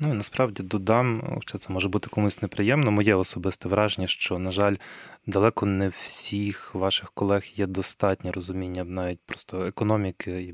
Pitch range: 95-110 Hz